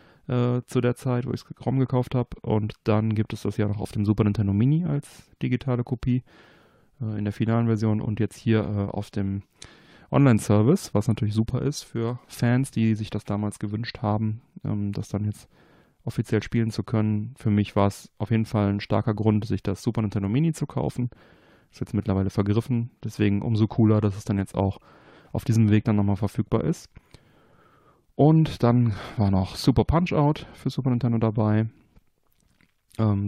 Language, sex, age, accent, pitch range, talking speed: German, male, 30-49, German, 105-130 Hz, 185 wpm